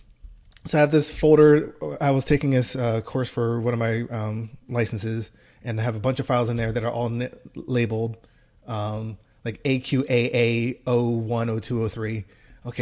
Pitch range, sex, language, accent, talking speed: 110-135 Hz, male, English, American, 170 wpm